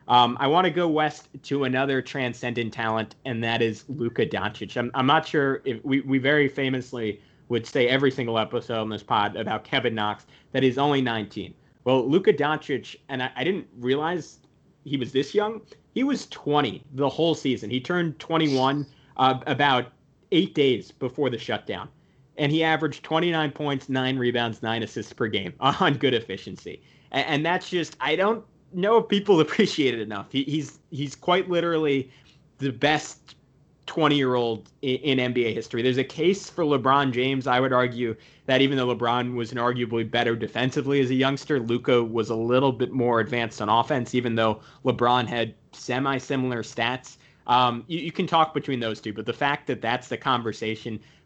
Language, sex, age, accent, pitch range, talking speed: English, male, 30-49, American, 120-145 Hz, 180 wpm